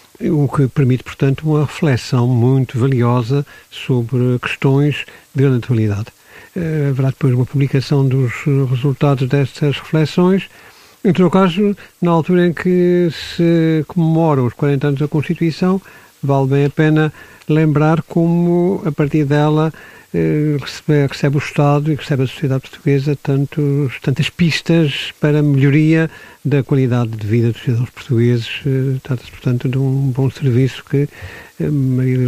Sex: male